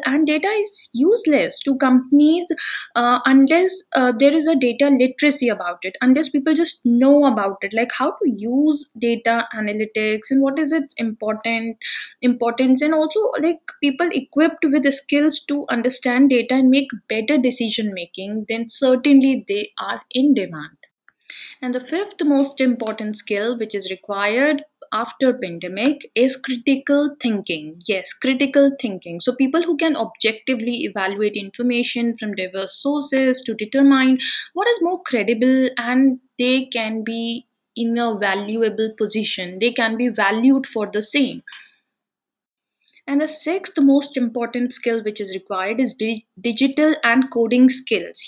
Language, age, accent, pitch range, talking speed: English, 10-29, Indian, 225-280 Hz, 145 wpm